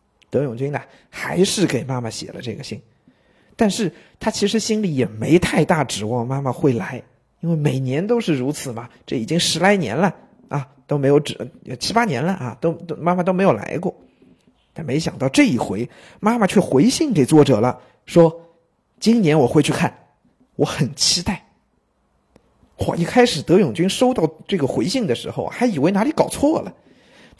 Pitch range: 135-195 Hz